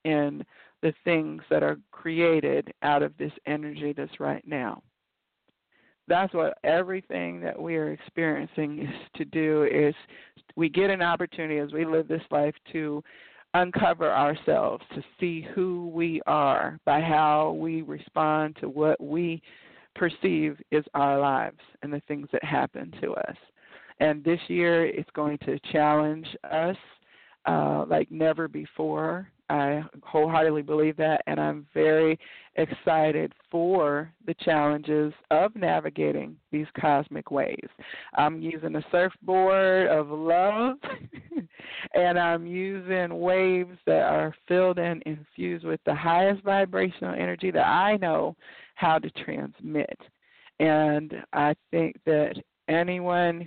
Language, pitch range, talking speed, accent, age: English, 150-170 Hz, 130 wpm, American, 40-59